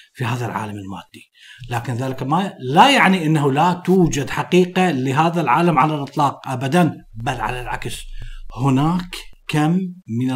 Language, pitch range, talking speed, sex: Arabic, 120-165 Hz, 140 wpm, male